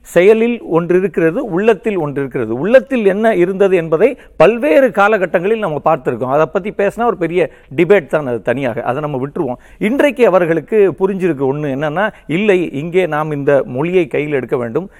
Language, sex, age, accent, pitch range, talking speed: Tamil, male, 50-69, native, 155-200 Hz, 135 wpm